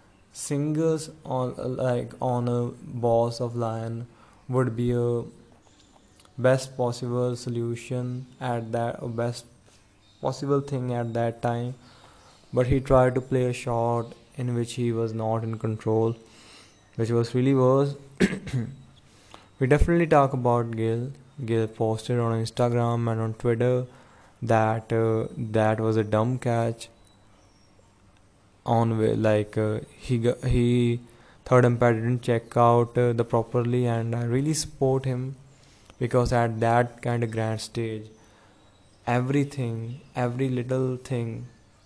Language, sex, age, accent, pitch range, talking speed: English, male, 20-39, Indian, 110-125 Hz, 130 wpm